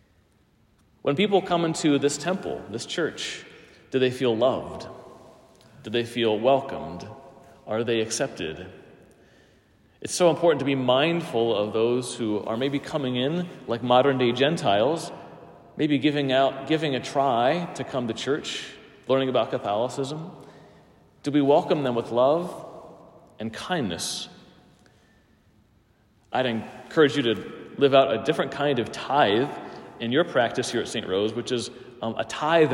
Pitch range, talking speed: 120-145 Hz, 145 wpm